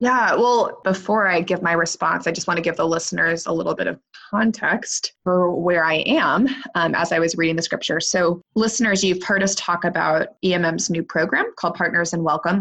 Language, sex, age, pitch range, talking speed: English, female, 20-39, 165-195 Hz, 210 wpm